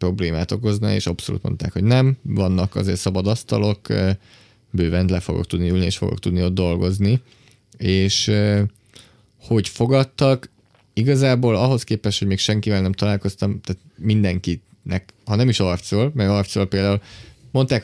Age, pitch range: 20-39, 95-115 Hz